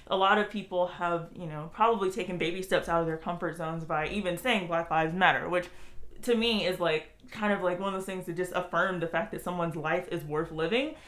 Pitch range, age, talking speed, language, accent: 170-210 Hz, 20-39, 245 wpm, English, American